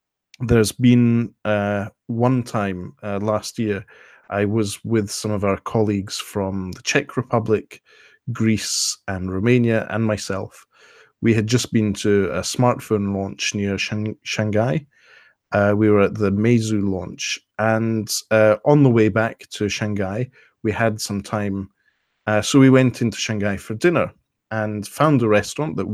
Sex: male